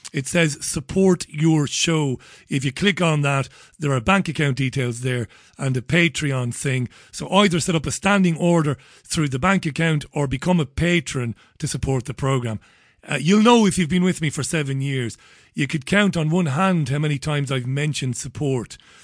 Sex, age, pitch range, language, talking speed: male, 40-59, 130-170 Hz, English, 195 wpm